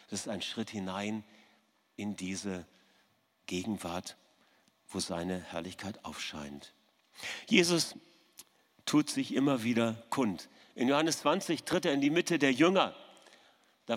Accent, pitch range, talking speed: German, 120-195 Hz, 125 wpm